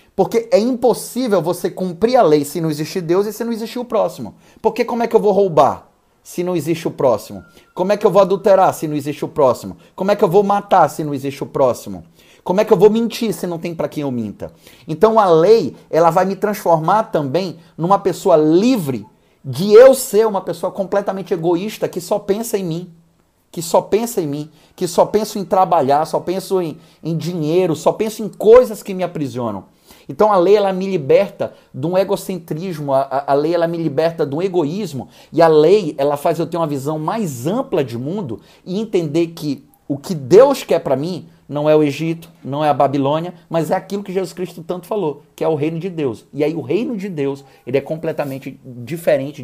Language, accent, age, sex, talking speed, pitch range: Portuguese, Brazilian, 30-49, male, 215 wpm, 150-200 Hz